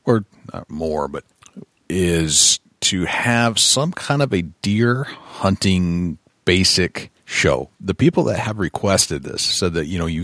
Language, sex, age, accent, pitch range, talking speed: English, male, 40-59, American, 85-115 Hz, 150 wpm